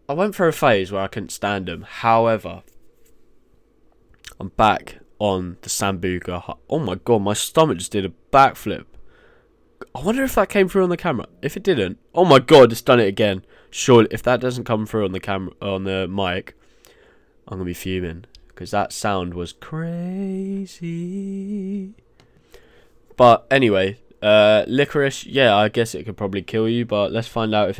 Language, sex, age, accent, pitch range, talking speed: English, male, 10-29, British, 95-120 Hz, 175 wpm